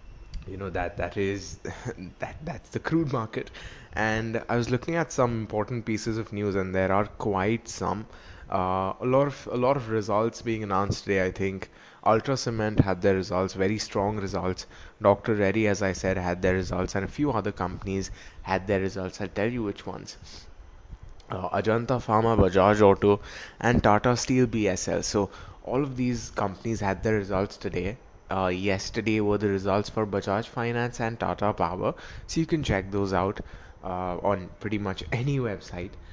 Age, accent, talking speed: 20-39, Indian, 180 wpm